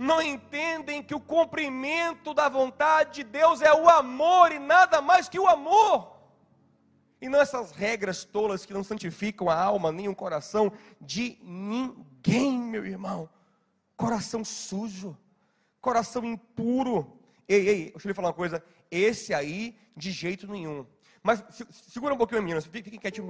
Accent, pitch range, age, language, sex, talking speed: Brazilian, 195-300 Hz, 30-49, Portuguese, male, 150 wpm